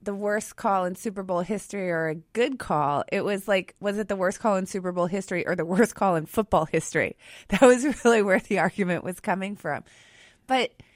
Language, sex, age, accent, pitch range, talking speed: English, female, 30-49, American, 185-240 Hz, 220 wpm